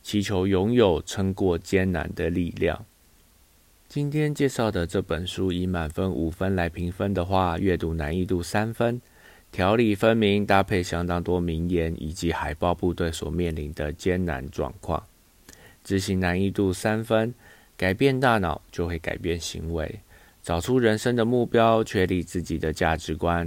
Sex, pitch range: male, 85-105 Hz